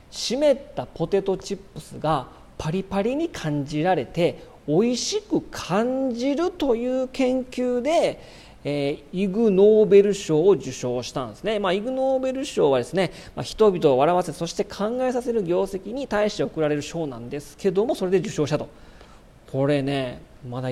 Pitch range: 150-235 Hz